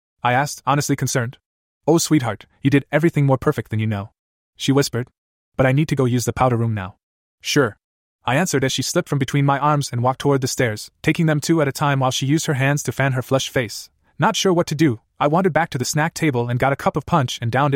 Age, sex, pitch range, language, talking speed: 20-39, male, 120-150 Hz, English, 260 wpm